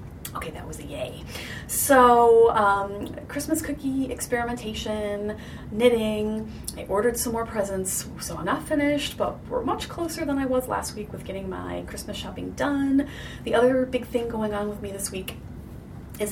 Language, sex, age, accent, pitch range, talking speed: English, female, 30-49, American, 180-245 Hz, 170 wpm